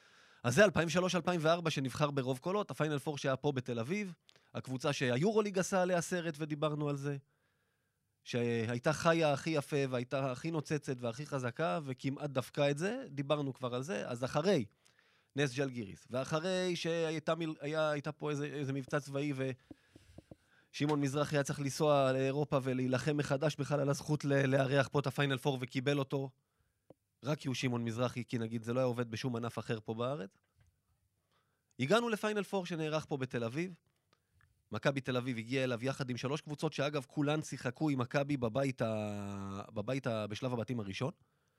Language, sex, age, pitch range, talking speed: Hebrew, male, 20-39, 120-150 Hz, 155 wpm